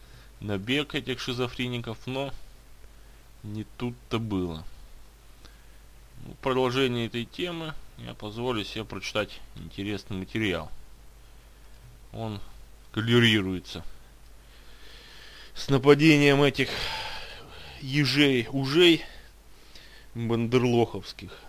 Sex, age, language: male, 20-39, Russian